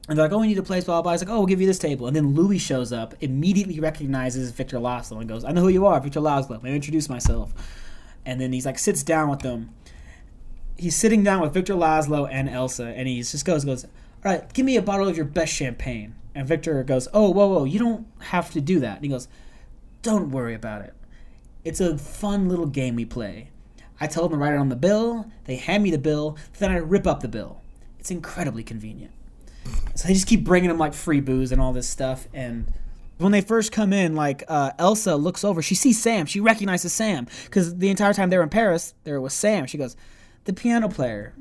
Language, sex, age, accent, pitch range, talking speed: English, male, 20-39, American, 130-190 Hz, 240 wpm